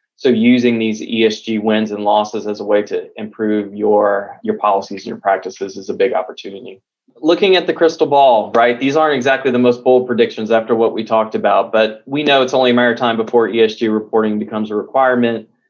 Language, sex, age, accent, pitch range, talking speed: English, male, 20-39, American, 105-125 Hz, 210 wpm